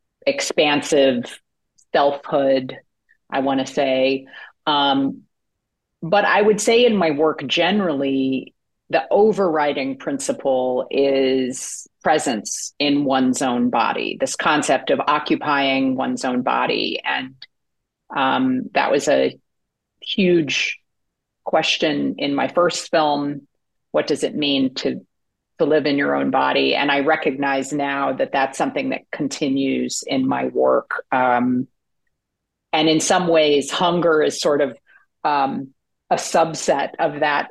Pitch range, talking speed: 130-175 Hz, 125 wpm